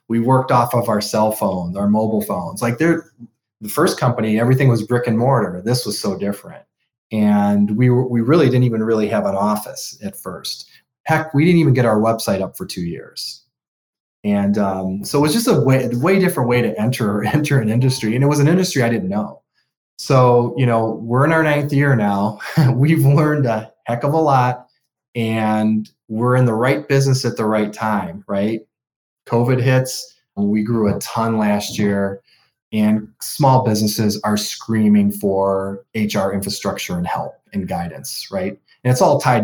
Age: 30-49